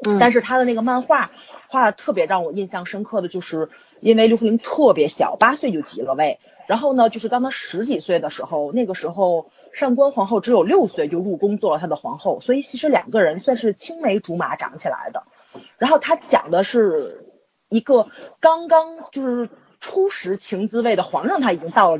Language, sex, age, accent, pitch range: Chinese, female, 30-49, native, 200-290 Hz